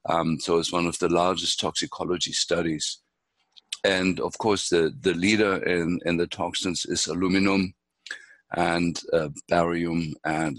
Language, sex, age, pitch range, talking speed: English, male, 60-79, 85-95 Hz, 140 wpm